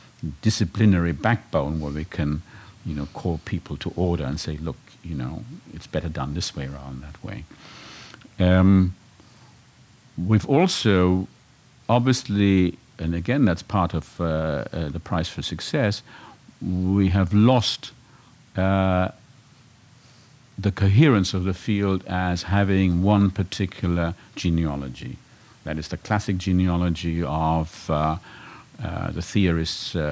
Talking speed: 130 wpm